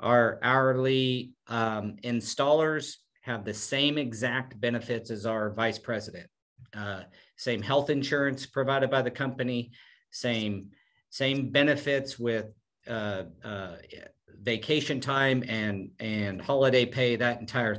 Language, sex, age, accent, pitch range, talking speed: English, male, 50-69, American, 110-135 Hz, 120 wpm